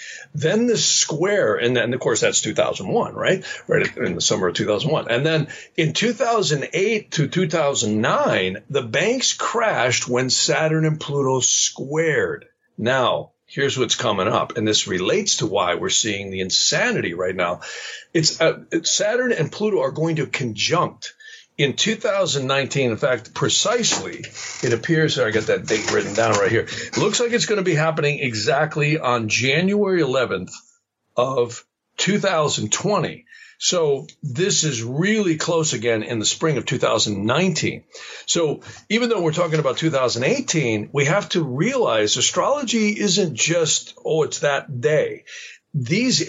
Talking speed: 145 wpm